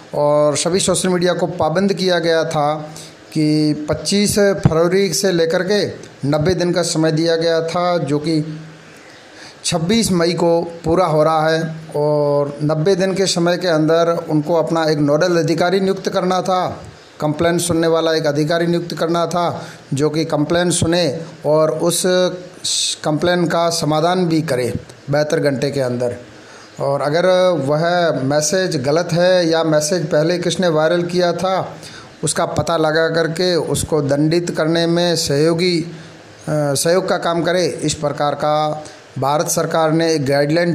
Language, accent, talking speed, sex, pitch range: Hindi, native, 155 wpm, male, 150-175 Hz